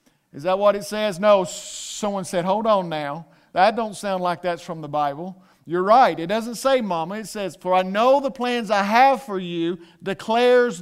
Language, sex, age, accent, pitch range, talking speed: English, male, 50-69, American, 180-235 Hz, 205 wpm